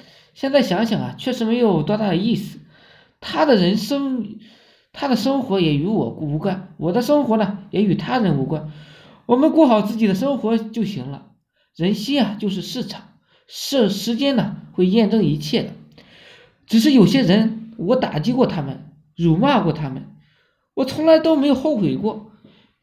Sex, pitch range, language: male, 180-250 Hz, Chinese